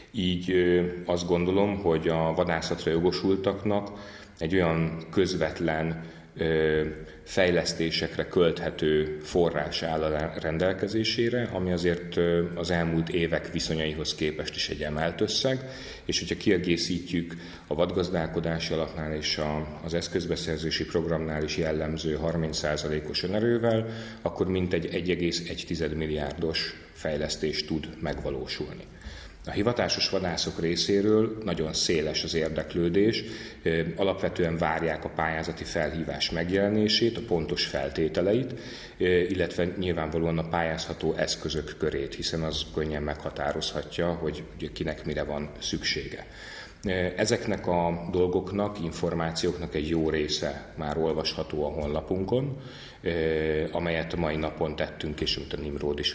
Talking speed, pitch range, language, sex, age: 110 wpm, 80-90 Hz, Hungarian, male, 30-49